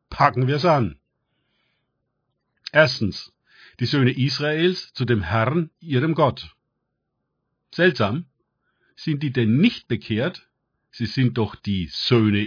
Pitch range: 115-150 Hz